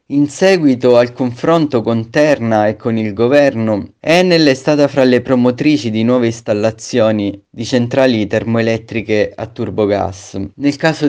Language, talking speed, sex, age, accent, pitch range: Italian, 140 wpm, male, 30-49, native, 110-135 Hz